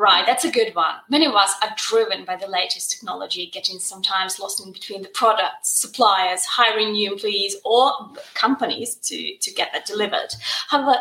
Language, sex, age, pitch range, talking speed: English, female, 20-39, 210-290 Hz, 180 wpm